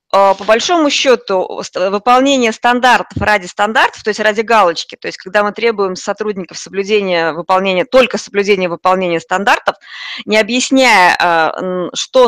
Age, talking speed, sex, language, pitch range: 20-39, 125 wpm, female, Russian, 185-235 Hz